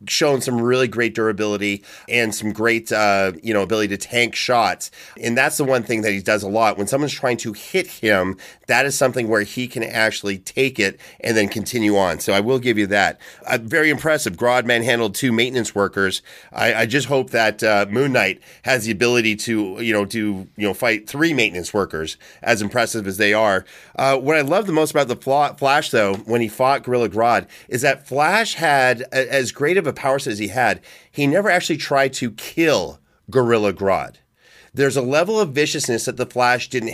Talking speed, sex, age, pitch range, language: 210 wpm, male, 30-49, 110-135 Hz, English